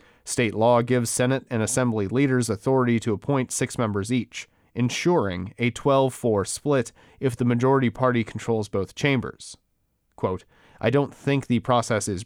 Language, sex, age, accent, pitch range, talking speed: English, male, 30-49, American, 110-135 Hz, 150 wpm